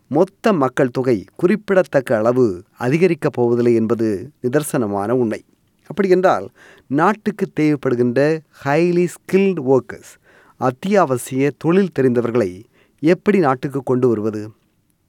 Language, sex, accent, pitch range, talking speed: Tamil, male, native, 125-175 Hz, 95 wpm